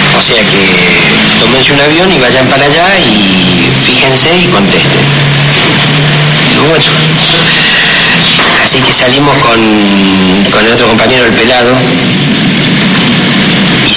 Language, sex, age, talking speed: Spanish, male, 50-69, 115 wpm